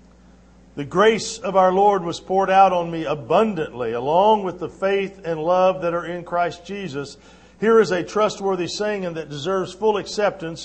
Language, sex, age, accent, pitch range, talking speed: English, male, 50-69, American, 165-205 Hz, 180 wpm